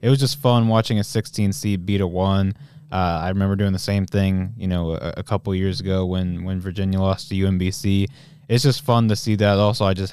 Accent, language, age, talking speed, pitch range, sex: American, English, 20-39, 245 wpm, 100-120 Hz, male